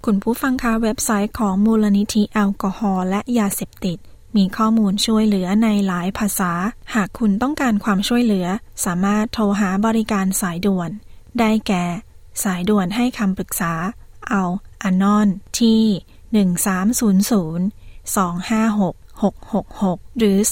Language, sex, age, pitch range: Thai, female, 20-39, 185-215 Hz